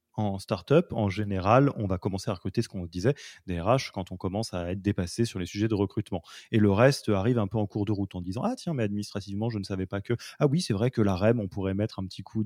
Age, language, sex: 20-39, French, male